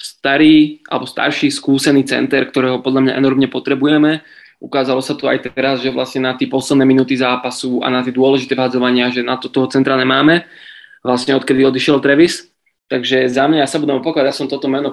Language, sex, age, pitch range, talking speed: Czech, male, 20-39, 130-145 Hz, 195 wpm